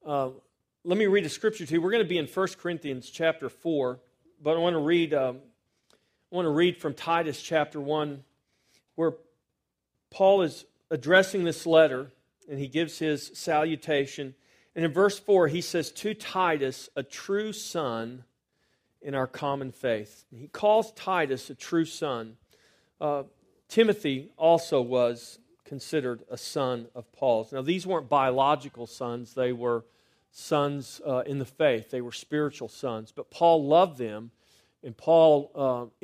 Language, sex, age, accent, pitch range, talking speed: English, male, 40-59, American, 130-165 Hz, 160 wpm